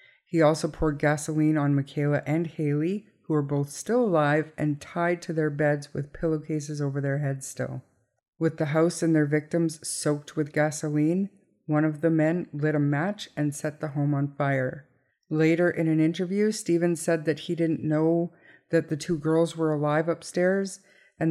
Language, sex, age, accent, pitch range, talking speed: English, female, 50-69, American, 150-170 Hz, 180 wpm